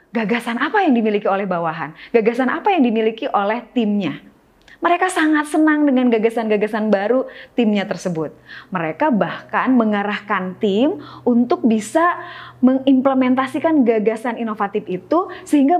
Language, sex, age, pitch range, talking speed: Indonesian, female, 20-39, 205-295 Hz, 120 wpm